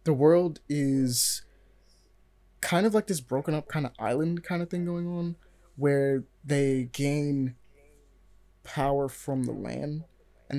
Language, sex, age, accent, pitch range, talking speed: English, male, 20-39, American, 125-150 Hz, 140 wpm